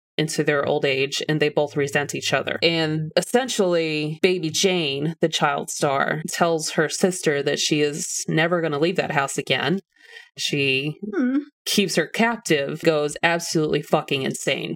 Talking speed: 155 wpm